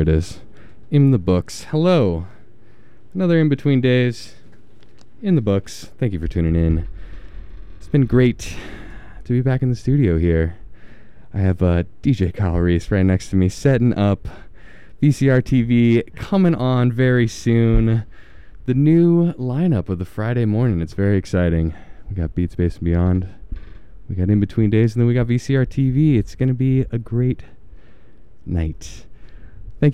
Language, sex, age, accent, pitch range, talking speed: English, male, 20-39, American, 90-125 Hz, 160 wpm